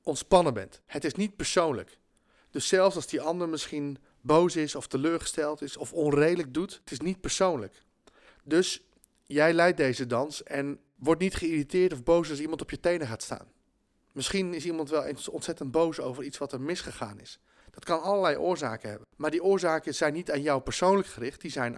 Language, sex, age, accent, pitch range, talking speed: Dutch, male, 40-59, Dutch, 135-170 Hz, 195 wpm